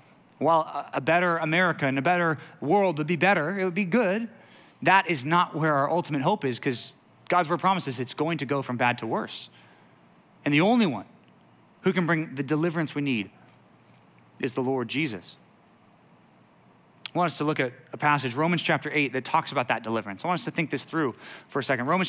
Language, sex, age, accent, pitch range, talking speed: English, male, 30-49, American, 135-175 Hz, 210 wpm